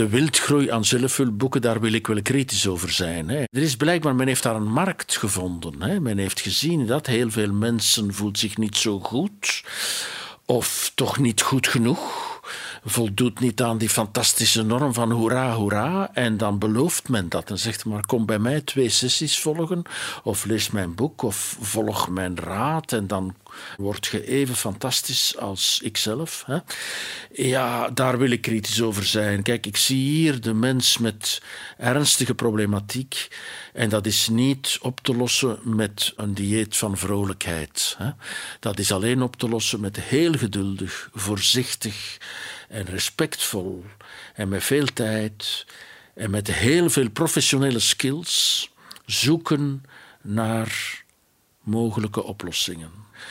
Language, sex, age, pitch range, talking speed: Dutch, male, 50-69, 105-130 Hz, 150 wpm